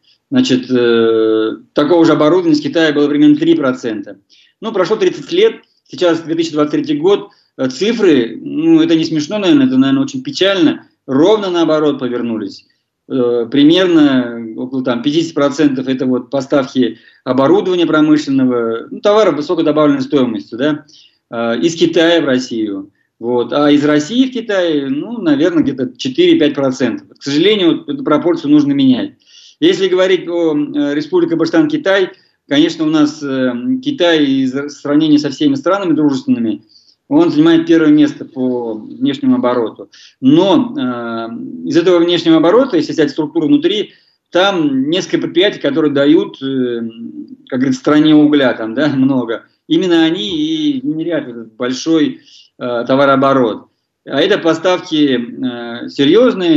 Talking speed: 130 wpm